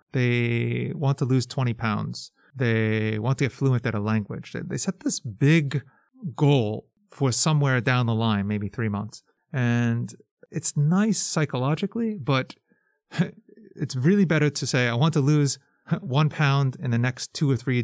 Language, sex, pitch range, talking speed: English, male, 120-165 Hz, 165 wpm